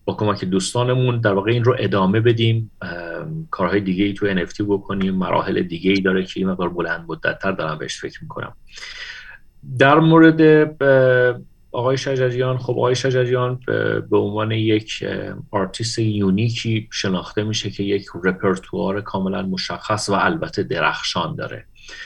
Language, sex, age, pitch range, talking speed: English, male, 40-59, 95-120 Hz, 140 wpm